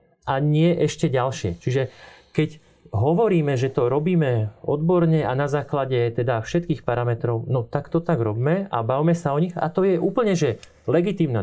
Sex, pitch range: male, 130-170 Hz